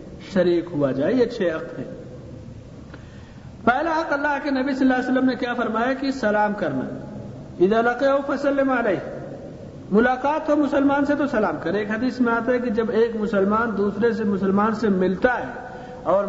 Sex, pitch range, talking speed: male, 200-270 Hz, 175 wpm